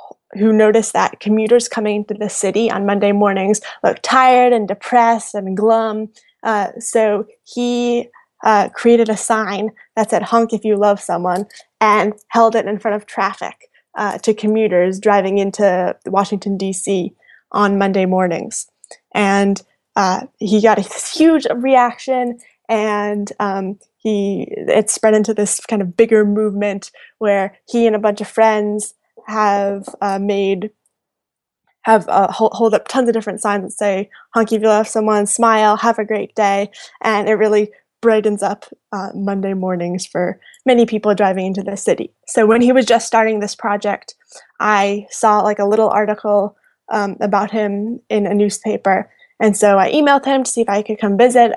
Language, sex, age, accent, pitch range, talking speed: English, female, 10-29, American, 200-225 Hz, 165 wpm